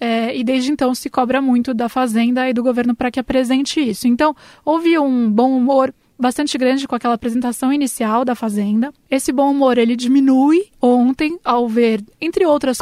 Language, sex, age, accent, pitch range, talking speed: Portuguese, female, 20-39, Brazilian, 230-265 Hz, 180 wpm